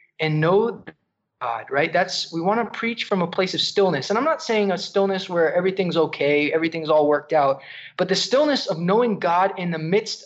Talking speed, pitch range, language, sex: 205 wpm, 160-205 Hz, English, male